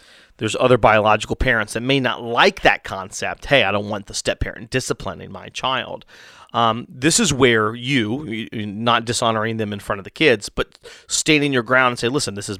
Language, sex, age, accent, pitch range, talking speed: English, male, 30-49, American, 110-145 Hz, 205 wpm